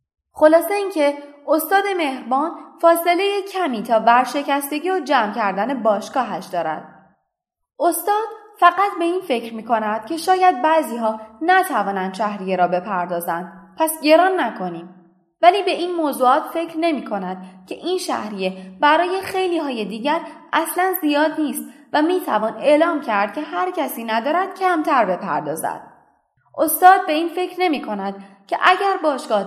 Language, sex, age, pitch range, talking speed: Persian, female, 20-39, 220-335 Hz, 140 wpm